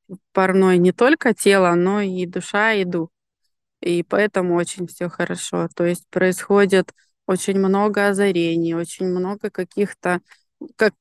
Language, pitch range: Russian, 180-210 Hz